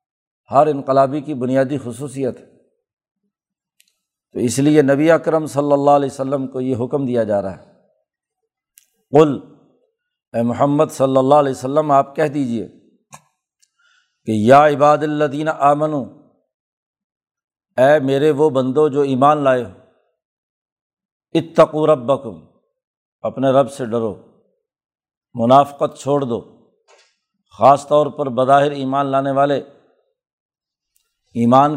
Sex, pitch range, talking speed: male, 135-155 Hz, 120 wpm